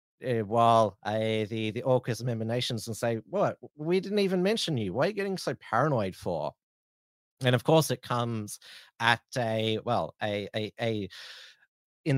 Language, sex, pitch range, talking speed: English, male, 105-130 Hz, 180 wpm